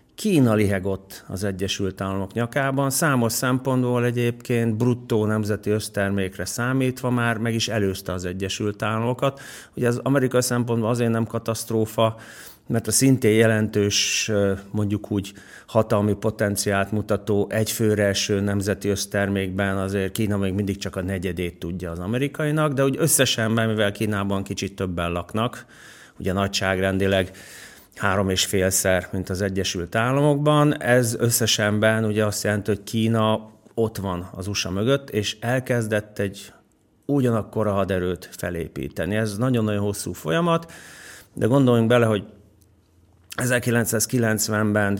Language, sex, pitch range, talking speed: Hungarian, male, 100-115 Hz, 125 wpm